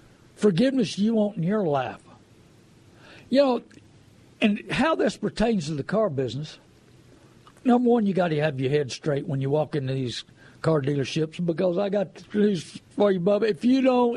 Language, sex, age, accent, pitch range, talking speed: English, male, 60-79, American, 155-225 Hz, 175 wpm